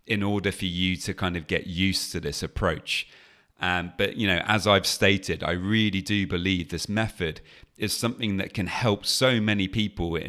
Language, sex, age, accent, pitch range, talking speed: English, male, 30-49, British, 90-115 Hz, 190 wpm